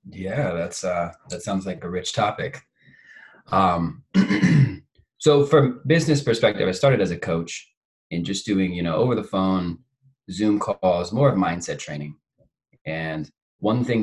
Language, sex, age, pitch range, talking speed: English, male, 20-39, 85-130 Hz, 155 wpm